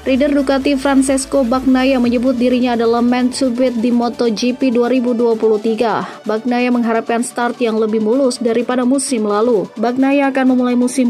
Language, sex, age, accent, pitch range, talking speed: Indonesian, female, 20-39, native, 225-255 Hz, 135 wpm